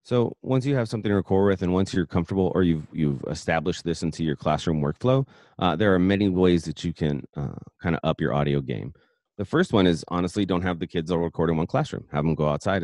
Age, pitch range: 30-49, 80-95 Hz